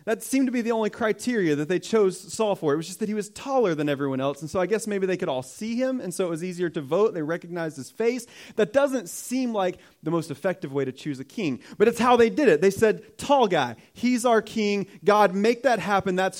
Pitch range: 140-200 Hz